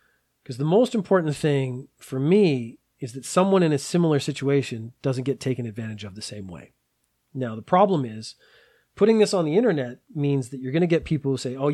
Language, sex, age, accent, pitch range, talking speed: English, male, 30-49, American, 120-165 Hz, 210 wpm